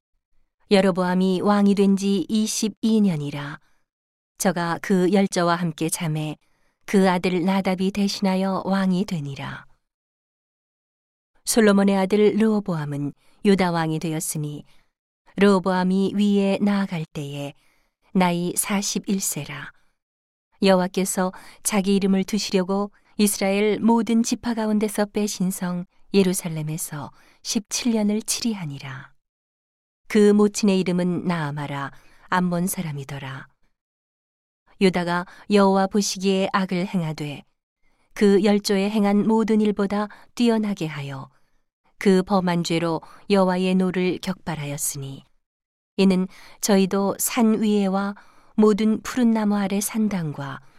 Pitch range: 170-205 Hz